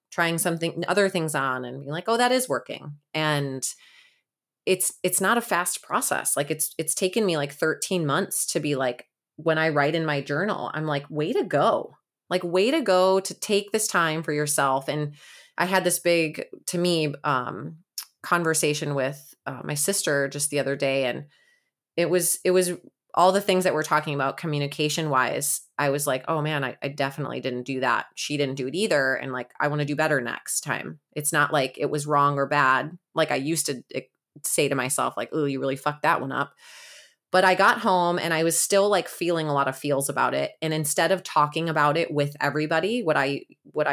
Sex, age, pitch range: female, 20-39, 145-175 Hz